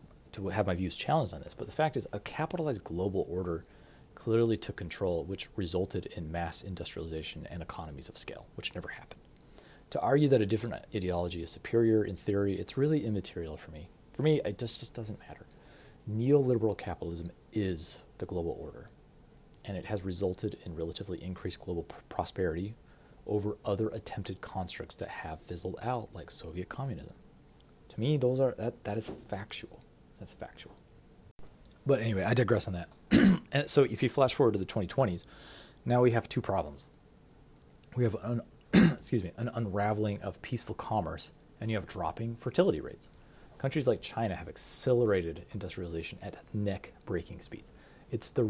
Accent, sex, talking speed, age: American, male, 170 wpm, 30-49